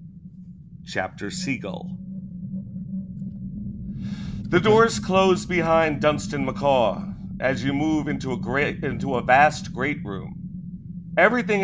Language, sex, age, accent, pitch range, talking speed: English, male, 50-69, American, 150-185 Hz, 105 wpm